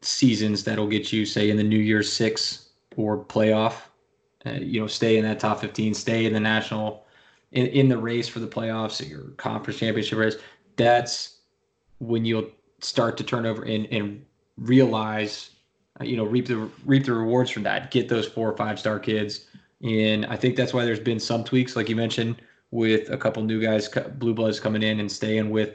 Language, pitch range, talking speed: English, 110-125 Hz, 205 wpm